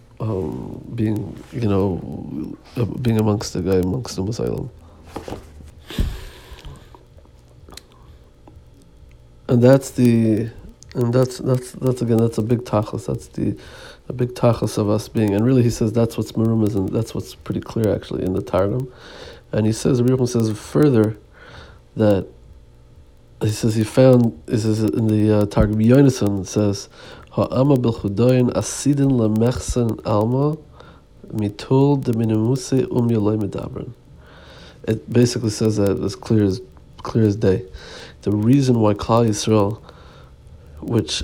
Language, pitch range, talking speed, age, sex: Hebrew, 100-120 Hz, 120 wpm, 50-69, male